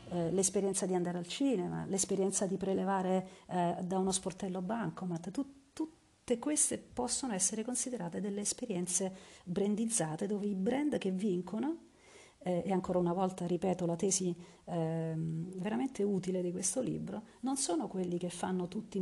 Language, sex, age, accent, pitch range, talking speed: Italian, female, 40-59, native, 180-225 Hz, 150 wpm